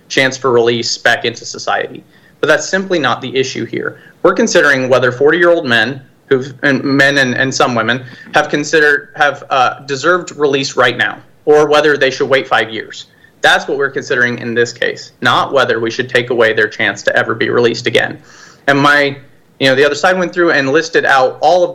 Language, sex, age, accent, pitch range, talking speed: English, male, 30-49, American, 125-155 Hz, 205 wpm